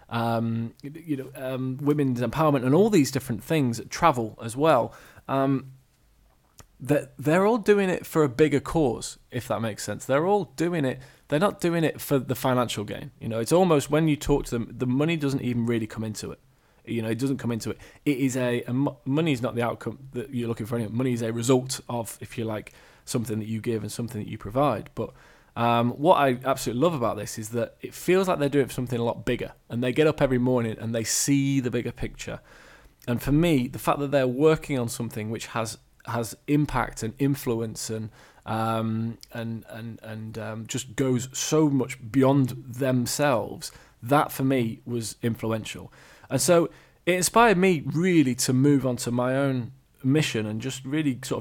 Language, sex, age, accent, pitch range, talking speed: English, male, 20-39, British, 115-140 Hz, 205 wpm